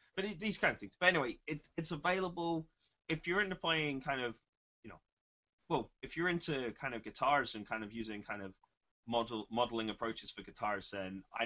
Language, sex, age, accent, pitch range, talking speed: English, male, 20-39, British, 100-145 Hz, 190 wpm